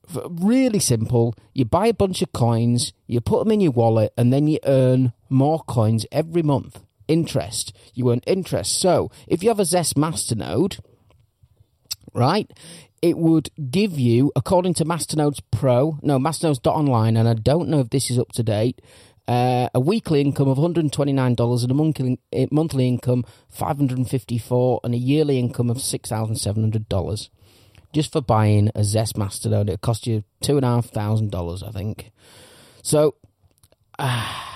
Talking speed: 165 wpm